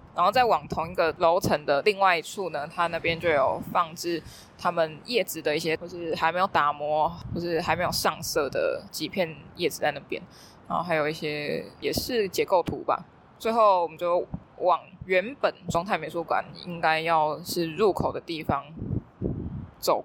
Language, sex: Chinese, female